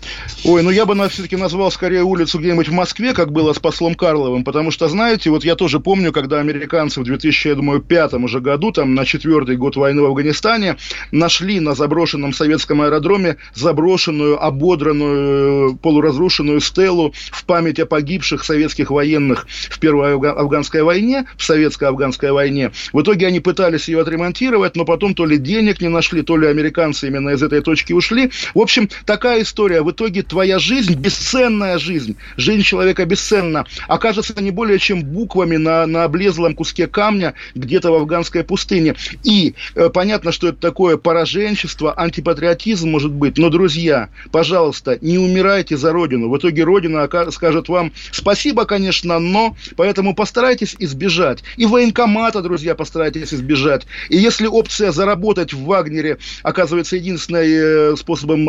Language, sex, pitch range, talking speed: Russian, male, 150-190 Hz, 150 wpm